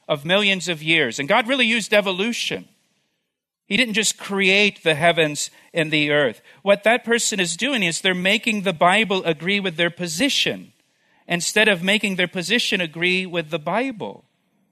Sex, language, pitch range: male, English, 150-200 Hz